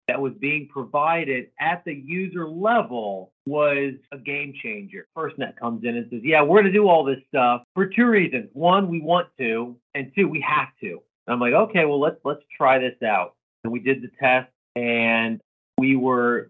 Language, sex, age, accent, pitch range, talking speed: English, male, 40-59, American, 125-155 Hz, 195 wpm